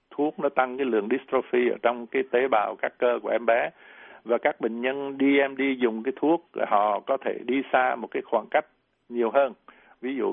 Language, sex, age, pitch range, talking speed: Vietnamese, male, 60-79, 115-140 Hz, 225 wpm